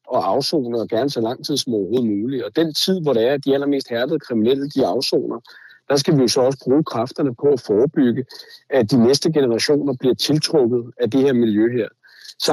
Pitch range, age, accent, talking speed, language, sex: 115-155 Hz, 60-79, native, 220 wpm, Danish, male